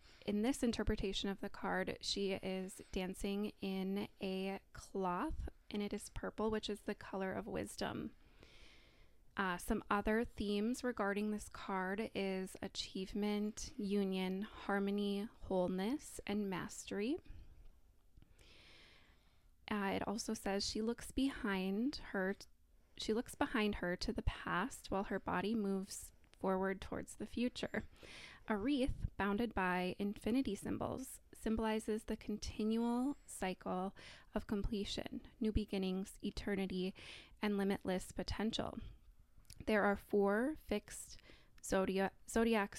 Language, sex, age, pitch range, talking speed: English, female, 20-39, 190-220 Hz, 115 wpm